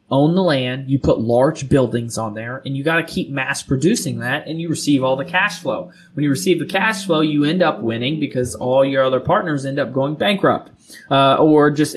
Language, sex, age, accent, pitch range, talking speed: English, male, 20-39, American, 130-150 Hz, 230 wpm